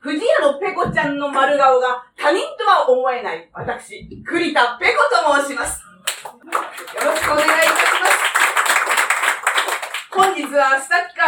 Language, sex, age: Japanese, female, 40-59